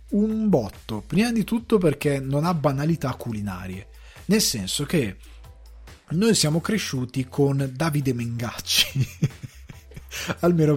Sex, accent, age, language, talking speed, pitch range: male, native, 20-39, Italian, 110 wpm, 125-160 Hz